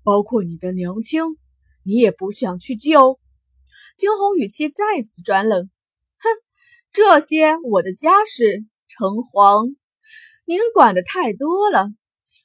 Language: Chinese